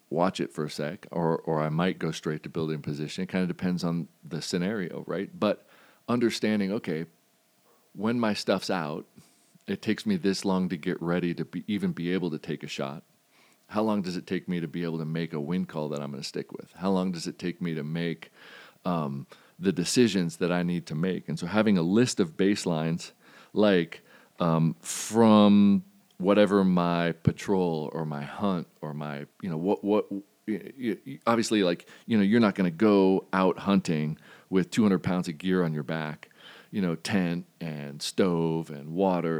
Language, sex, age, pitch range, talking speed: English, male, 40-59, 80-95 Hz, 200 wpm